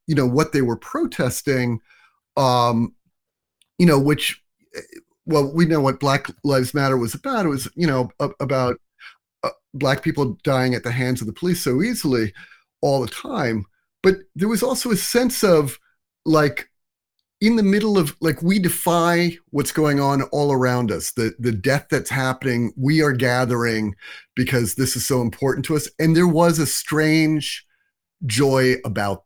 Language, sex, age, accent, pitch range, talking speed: English, male, 40-59, American, 120-155 Hz, 165 wpm